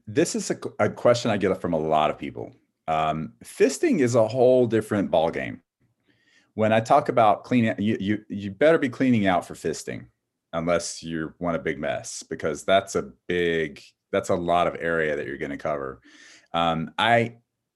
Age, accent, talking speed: 30-49, American, 185 wpm